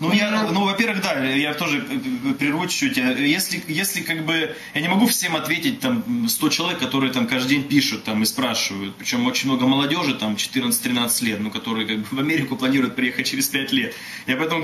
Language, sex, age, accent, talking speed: Russian, male, 20-39, native, 200 wpm